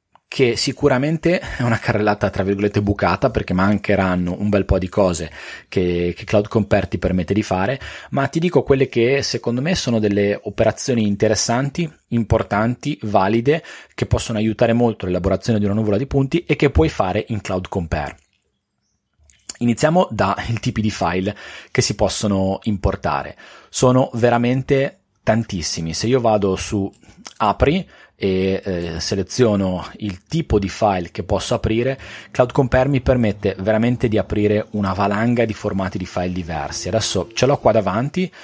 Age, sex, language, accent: 30-49, male, Italian, native